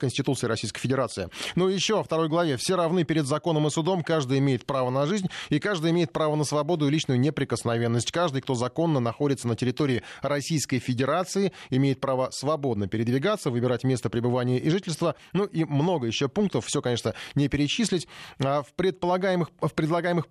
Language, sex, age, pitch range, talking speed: Russian, male, 20-39, 130-165 Hz, 175 wpm